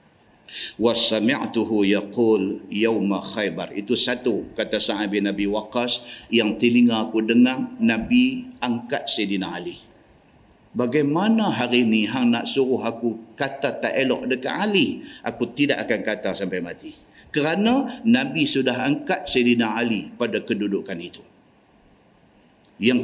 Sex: male